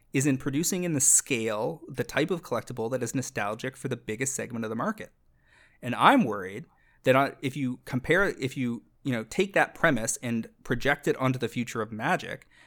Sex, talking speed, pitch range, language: male, 200 wpm, 115-145 Hz, English